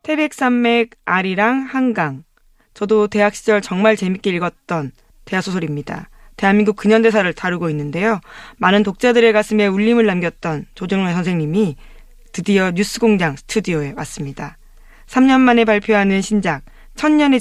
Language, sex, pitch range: Korean, female, 170-225 Hz